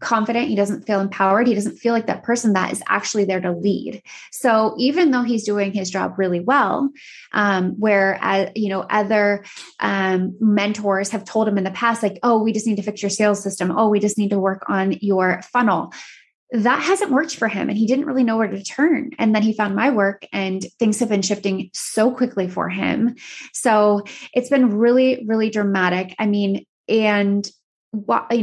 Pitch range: 200-250 Hz